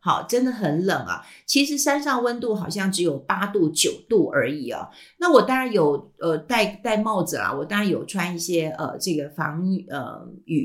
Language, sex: Chinese, female